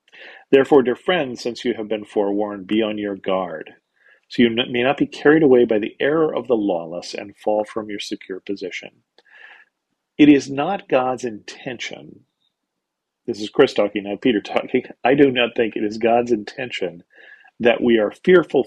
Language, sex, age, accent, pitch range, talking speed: English, male, 40-59, American, 105-125 Hz, 175 wpm